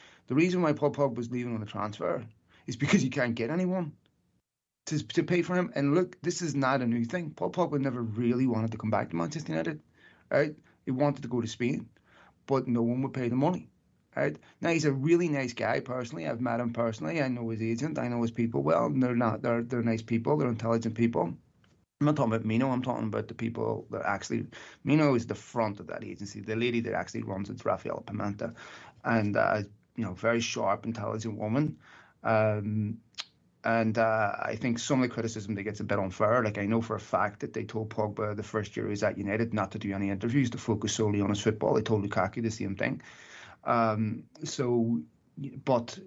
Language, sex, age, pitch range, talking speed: English, male, 30-49, 110-125 Hz, 220 wpm